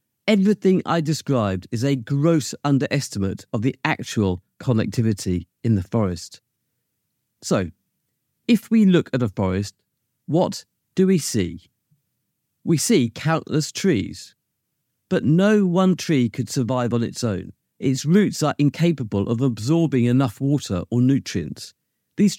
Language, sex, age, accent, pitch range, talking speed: English, male, 40-59, British, 110-165 Hz, 130 wpm